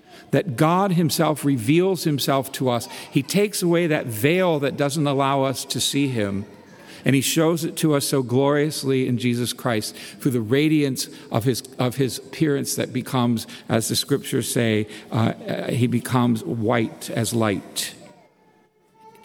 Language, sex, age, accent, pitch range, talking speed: English, male, 50-69, American, 125-165 Hz, 160 wpm